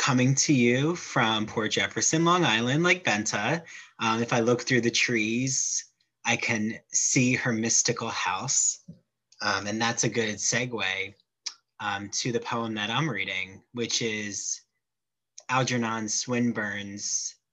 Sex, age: male, 20-39